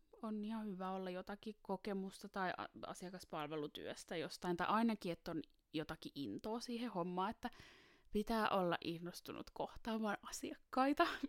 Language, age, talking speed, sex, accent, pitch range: Finnish, 20-39, 120 wpm, female, native, 170-240 Hz